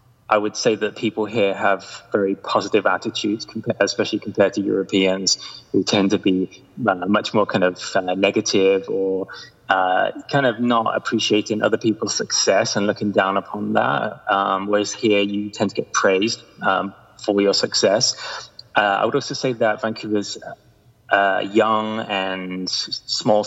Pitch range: 100-115 Hz